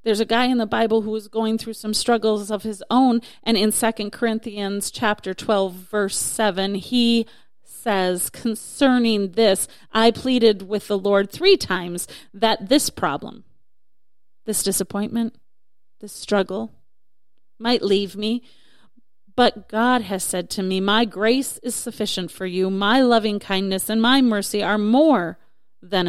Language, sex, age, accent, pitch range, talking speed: English, female, 40-59, American, 195-230 Hz, 150 wpm